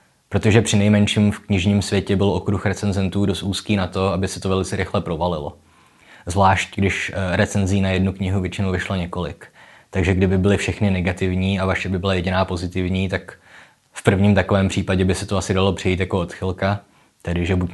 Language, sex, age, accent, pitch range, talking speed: Czech, male, 20-39, native, 90-100 Hz, 185 wpm